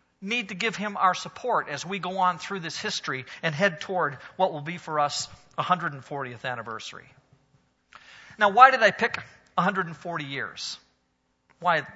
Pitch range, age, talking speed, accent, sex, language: 160-220 Hz, 40-59, 155 wpm, American, male, English